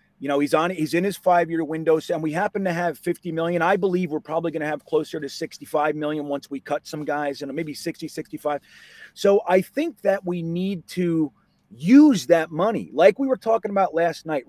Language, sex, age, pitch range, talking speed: English, male, 30-49, 155-200 Hz, 230 wpm